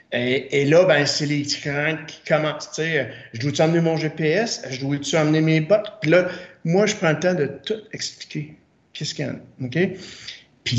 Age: 60-79